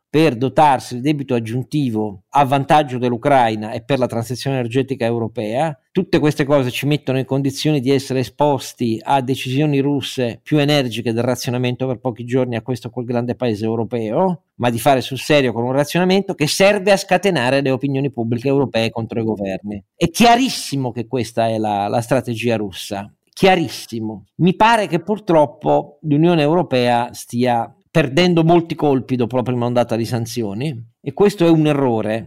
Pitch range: 120-150 Hz